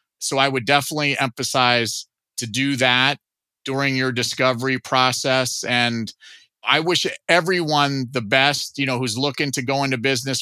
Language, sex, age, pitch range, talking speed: English, male, 30-49, 130-160 Hz, 150 wpm